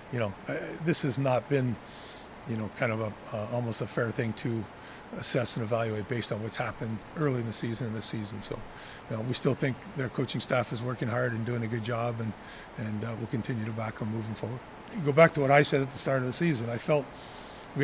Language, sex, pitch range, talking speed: English, male, 120-145 Hz, 240 wpm